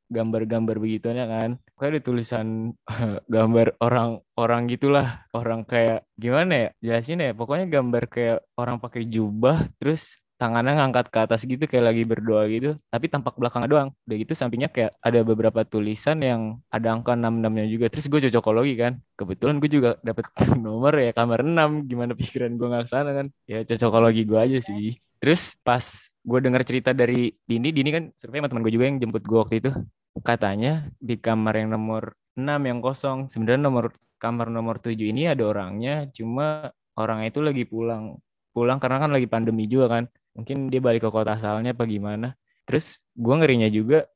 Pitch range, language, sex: 115-130 Hz, Indonesian, male